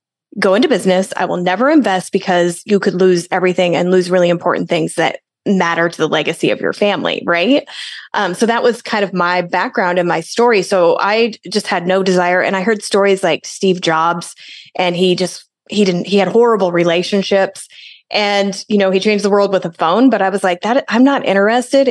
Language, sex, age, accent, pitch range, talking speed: English, female, 20-39, American, 180-205 Hz, 210 wpm